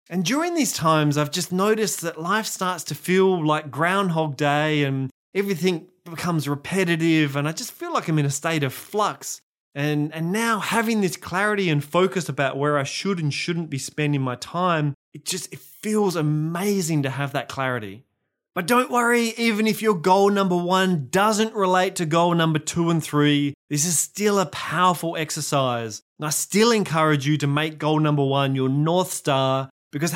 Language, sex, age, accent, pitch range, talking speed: English, male, 20-39, Australian, 150-190 Hz, 185 wpm